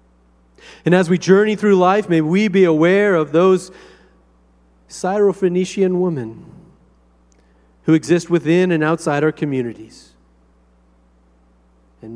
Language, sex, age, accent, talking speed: English, male, 40-59, American, 110 wpm